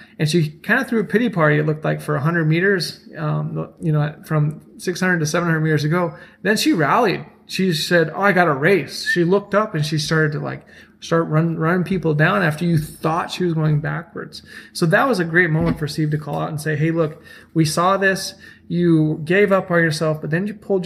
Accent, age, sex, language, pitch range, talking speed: American, 30-49, male, English, 155-180 Hz, 230 wpm